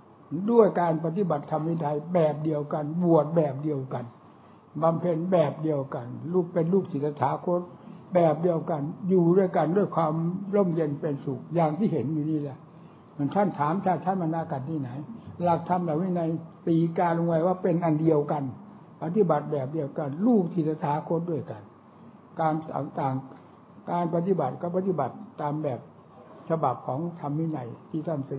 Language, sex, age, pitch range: English, male, 60-79, 145-175 Hz